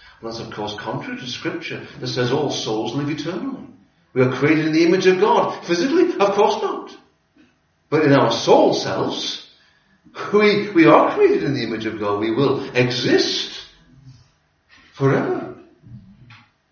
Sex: male